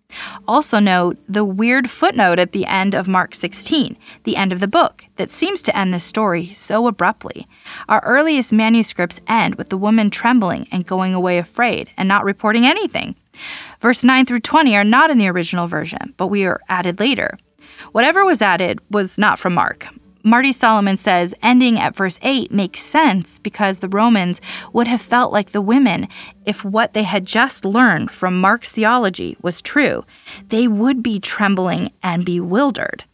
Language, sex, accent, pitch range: English, female, American, 190-245 Hz